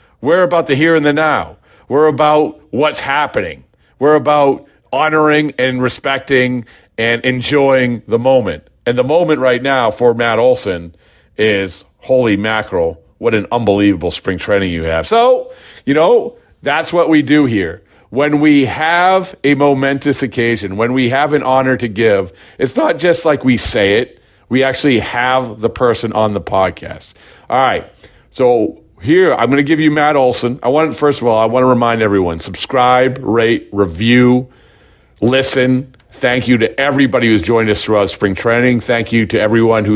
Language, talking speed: English, 170 wpm